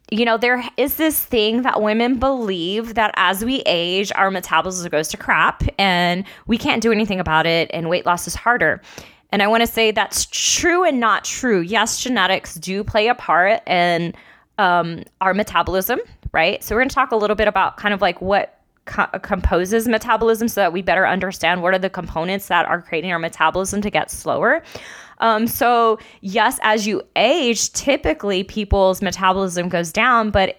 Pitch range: 180-225 Hz